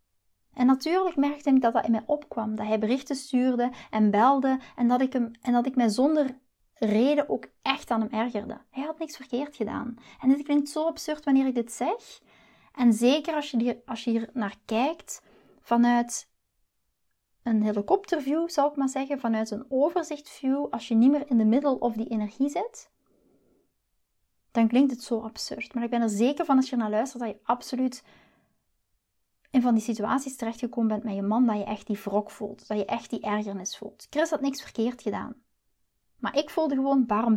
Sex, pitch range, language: female, 220-275 Hz, Dutch